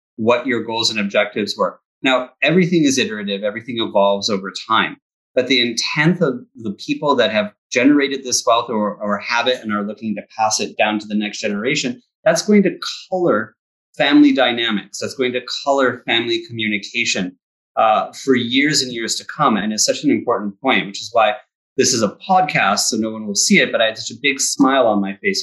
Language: English